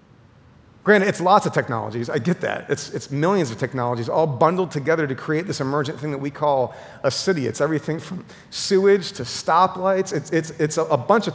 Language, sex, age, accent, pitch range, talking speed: English, male, 40-59, American, 135-170 Hz, 195 wpm